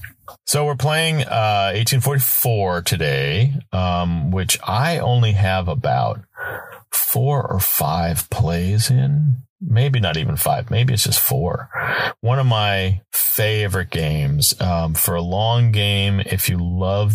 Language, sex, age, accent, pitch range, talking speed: English, male, 40-59, American, 90-120 Hz, 135 wpm